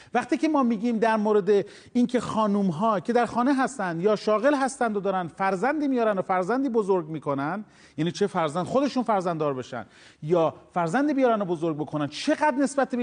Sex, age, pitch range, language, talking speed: male, 40-59, 195-275 Hz, Persian, 175 wpm